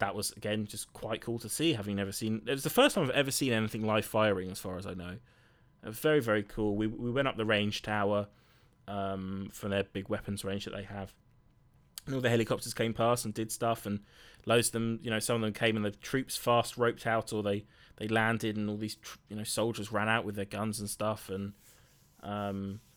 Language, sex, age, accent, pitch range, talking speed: English, male, 20-39, British, 100-115 Hz, 240 wpm